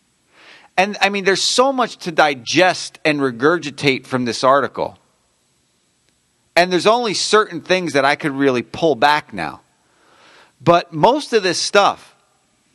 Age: 40-59